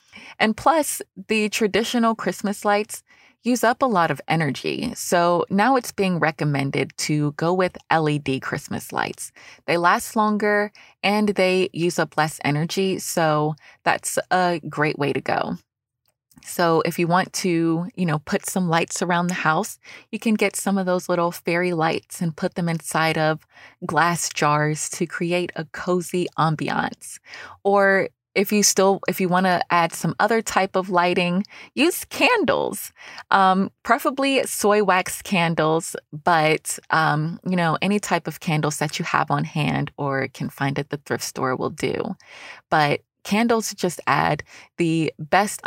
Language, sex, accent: English, female, American